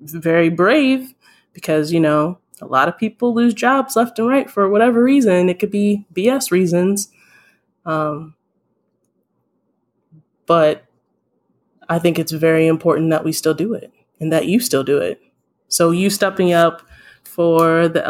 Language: English